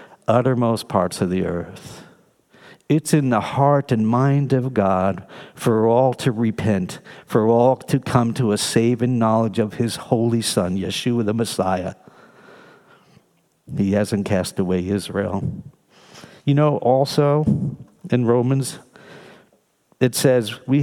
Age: 60-79